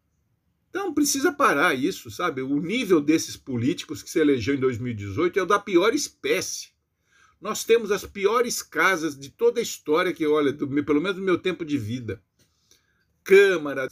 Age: 50-69